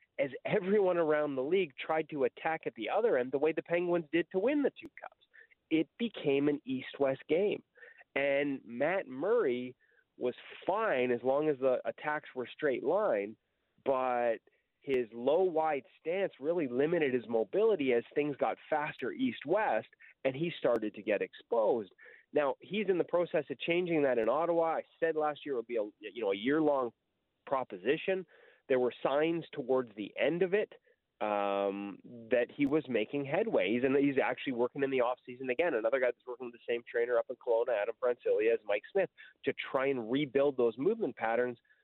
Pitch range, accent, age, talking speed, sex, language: 125-210 Hz, American, 30-49, 190 wpm, male, English